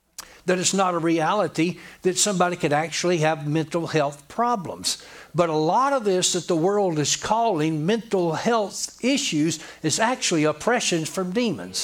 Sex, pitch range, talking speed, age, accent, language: male, 175-215 Hz, 155 wpm, 60-79, American, English